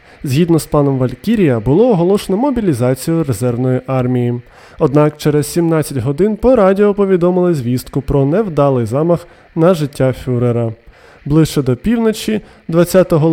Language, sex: Ukrainian, male